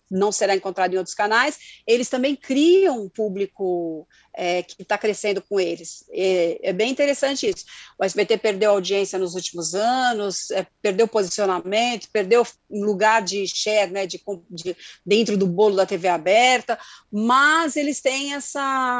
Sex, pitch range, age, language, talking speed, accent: female, 210-285 Hz, 40-59, Portuguese, 140 wpm, Brazilian